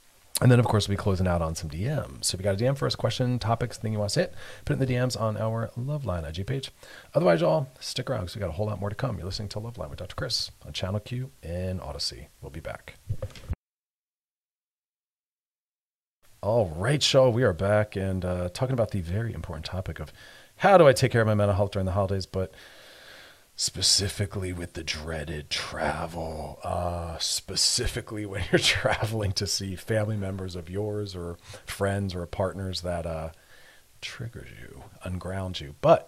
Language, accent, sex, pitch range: English, American, male, 90-115 Hz